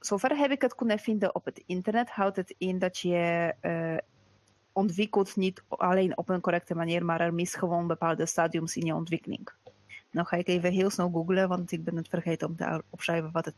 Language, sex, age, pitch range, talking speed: Dutch, female, 20-39, 165-190 Hz, 210 wpm